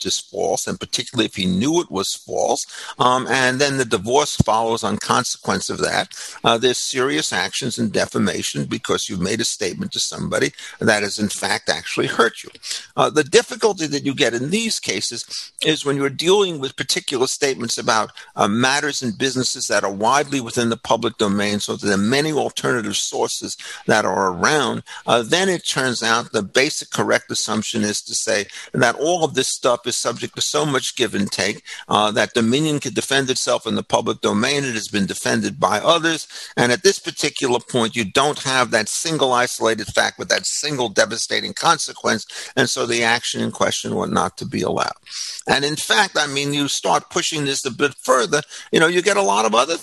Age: 50-69